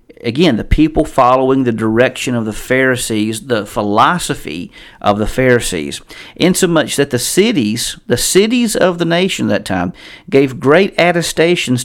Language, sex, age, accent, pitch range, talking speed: English, male, 50-69, American, 110-145 Hz, 145 wpm